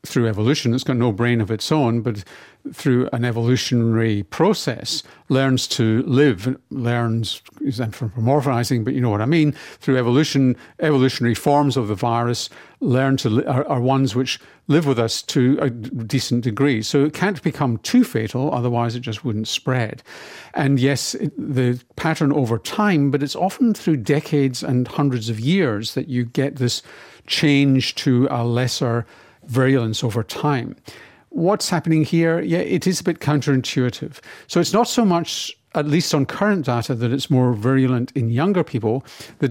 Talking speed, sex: 175 wpm, male